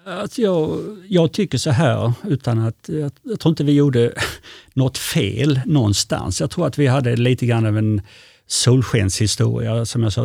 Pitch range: 110-135 Hz